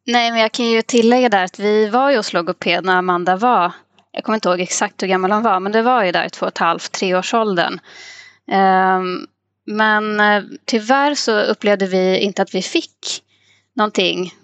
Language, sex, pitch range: Swedish, female, 185-225 Hz